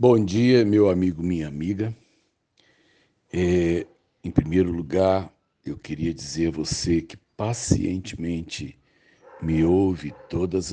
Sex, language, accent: male, Portuguese, Brazilian